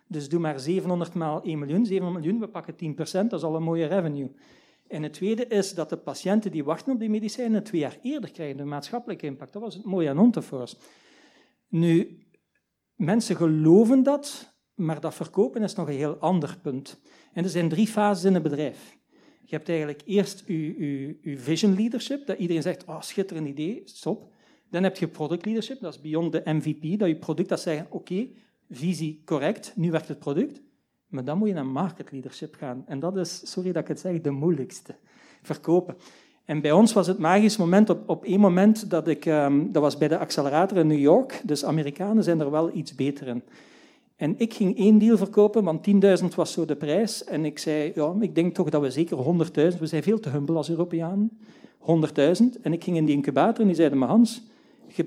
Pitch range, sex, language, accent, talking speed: 155-210 Hz, male, Dutch, Dutch, 215 wpm